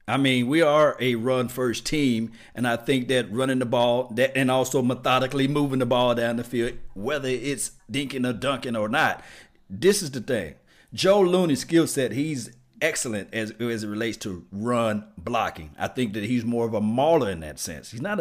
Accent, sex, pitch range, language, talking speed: American, male, 110-145 Hz, English, 200 wpm